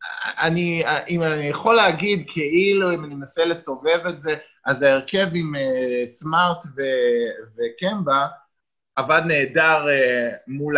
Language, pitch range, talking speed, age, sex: Hebrew, 135-205 Hz, 115 wpm, 20-39, male